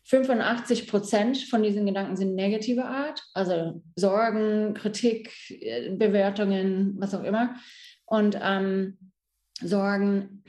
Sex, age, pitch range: female, 30-49, 195-245 Hz